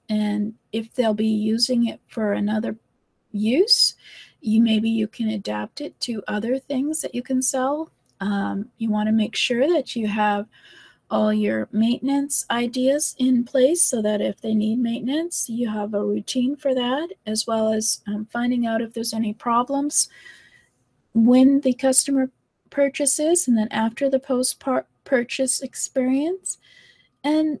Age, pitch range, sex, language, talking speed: 30-49, 220-275 Hz, female, English, 150 wpm